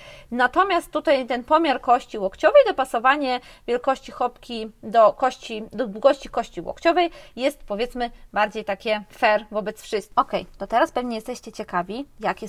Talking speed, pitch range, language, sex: 140 wpm, 210-270 Hz, Polish, female